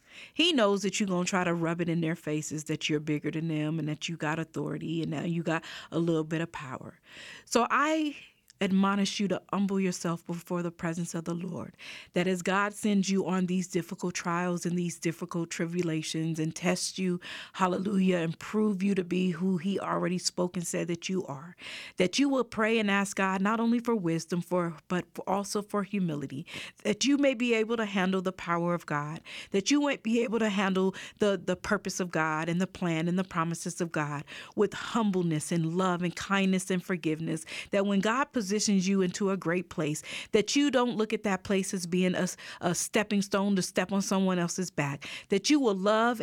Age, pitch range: 40-59, 170-200 Hz